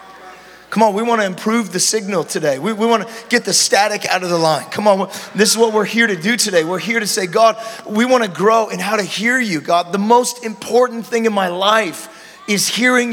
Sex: male